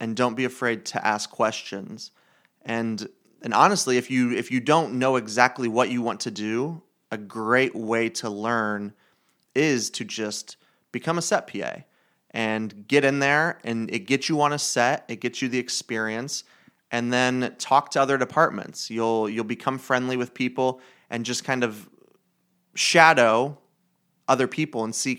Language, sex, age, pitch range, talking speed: English, male, 30-49, 110-130 Hz, 170 wpm